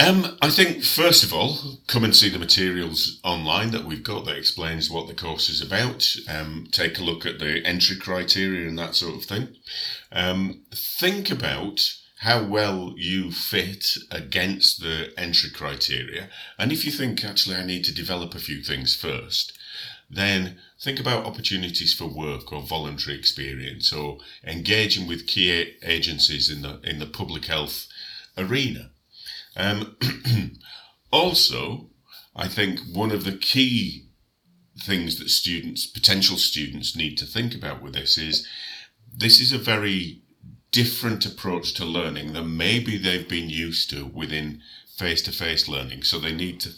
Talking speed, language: 155 wpm, English